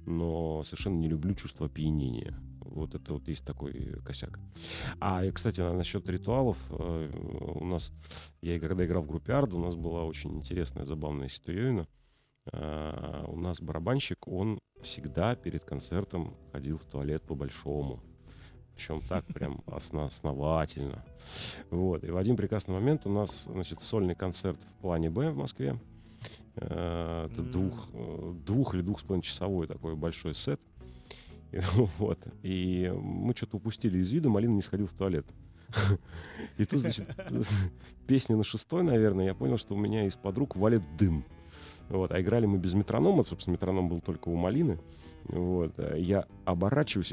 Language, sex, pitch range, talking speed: Russian, male, 80-110 Hz, 145 wpm